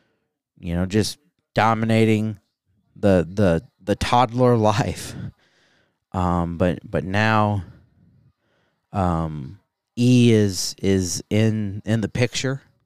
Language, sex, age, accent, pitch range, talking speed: English, male, 30-49, American, 95-120 Hz, 100 wpm